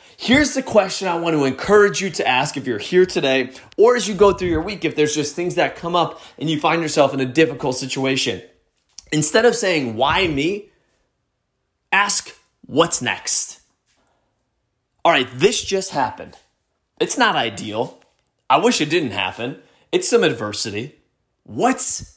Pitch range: 135-195 Hz